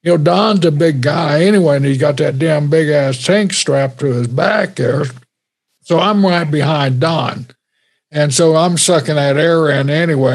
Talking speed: 185 wpm